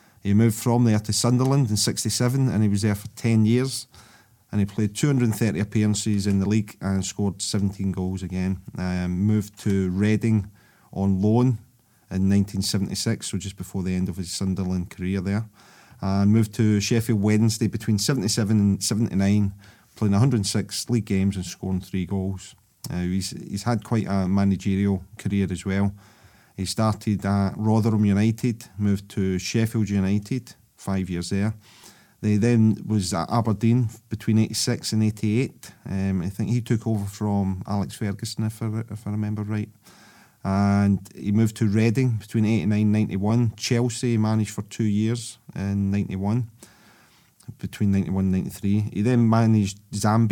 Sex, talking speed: male, 155 wpm